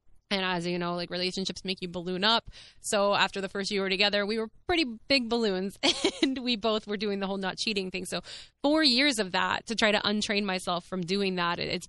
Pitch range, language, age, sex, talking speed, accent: 185-220 Hz, English, 20-39, female, 235 wpm, American